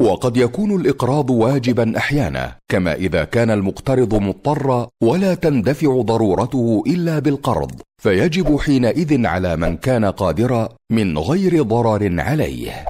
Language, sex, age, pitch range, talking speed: Arabic, male, 50-69, 105-140 Hz, 115 wpm